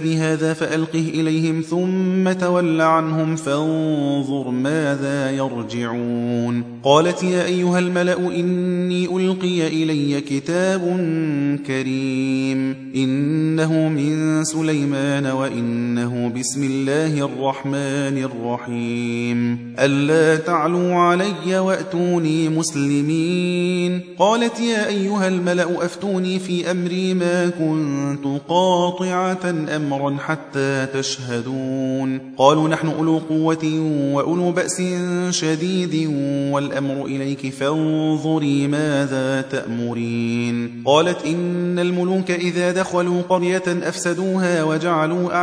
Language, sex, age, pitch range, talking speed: Arabic, male, 30-49, 135-175 Hz, 85 wpm